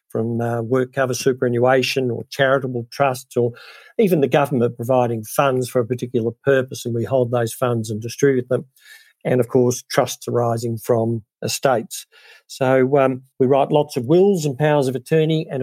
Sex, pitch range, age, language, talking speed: male, 120-145 Hz, 50-69, English, 175 wpm